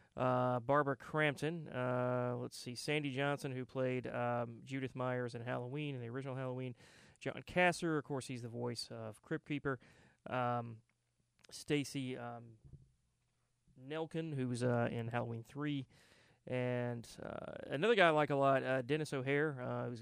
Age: 30-49